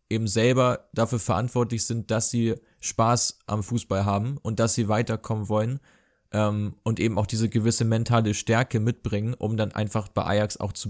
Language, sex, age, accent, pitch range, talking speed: German, male, 20-39, German, 110-125 Hz, 175 wpm